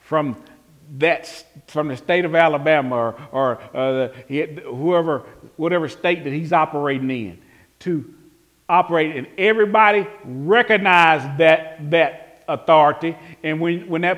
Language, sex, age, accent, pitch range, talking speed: English, male, 40-59, American, 155-260 Hz, 125 wpm